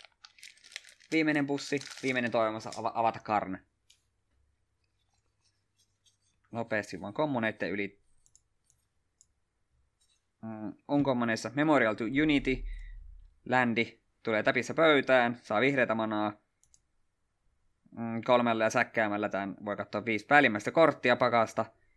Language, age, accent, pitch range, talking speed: Finnish, 20-39, native, 100-125 Hz, 95 wpm